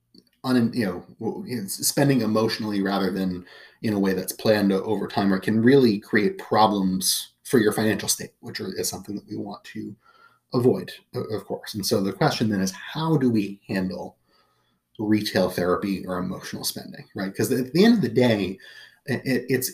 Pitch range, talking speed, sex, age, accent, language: 100-130 Hz, 170 wpm, male, 30-49, American, English